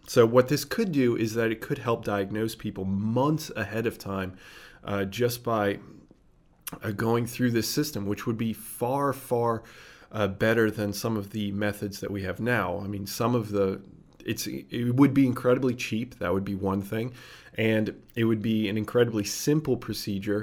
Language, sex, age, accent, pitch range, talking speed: English, male, 30-49, American, 100-120 Hz, 190 wpm